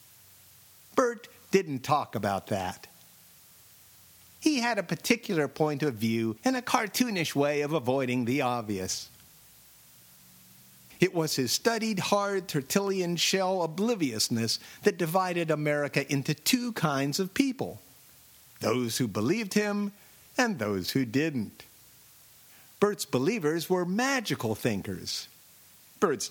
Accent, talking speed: American, 115 wpm